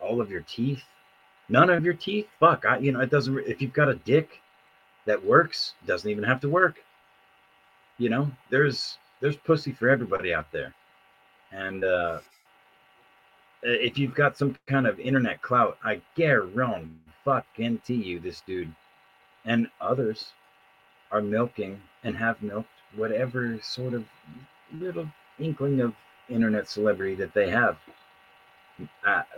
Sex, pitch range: male, 110-140 Hz